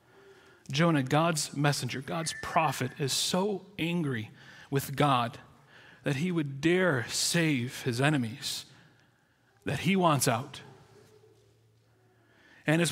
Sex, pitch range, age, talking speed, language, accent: male, 125-155 Hz, 40-59, 105 wpm, English, American